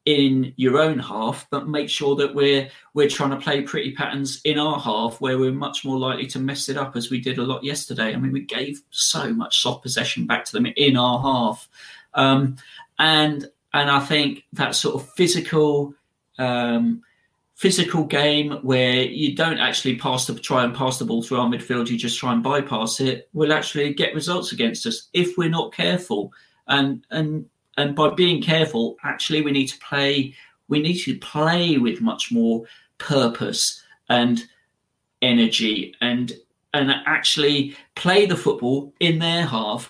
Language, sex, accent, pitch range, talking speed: English, male, British, 130-155 Hz, 180 wpm